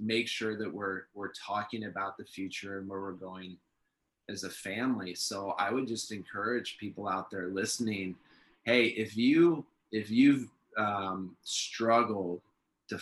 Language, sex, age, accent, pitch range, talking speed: English, male, 20-39, American, 100-125 Hz, 150 wpm